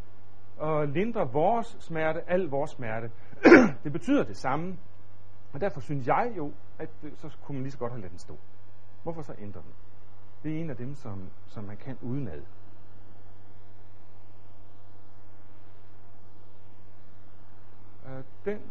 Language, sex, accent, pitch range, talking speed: Danish, male, native, 100-165 Hz, 135 wpm